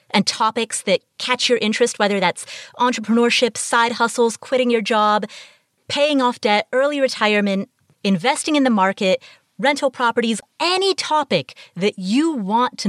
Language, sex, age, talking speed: English, female, 30-49, 145 wpm